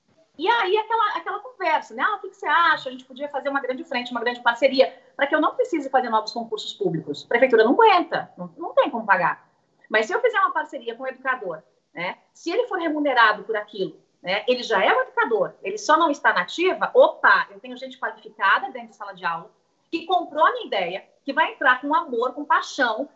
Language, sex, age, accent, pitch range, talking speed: Portuguese, female, 30-49, Brazilian, 230-335 Hz, 235 wpm